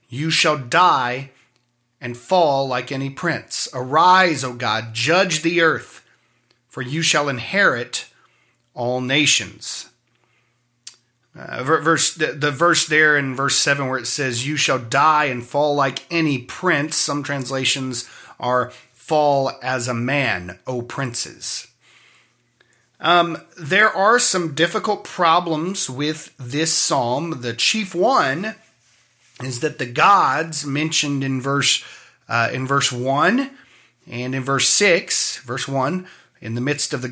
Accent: American